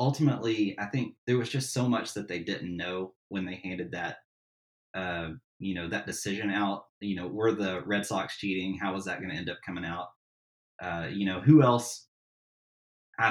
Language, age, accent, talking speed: English, 20-39, American, 200 wpm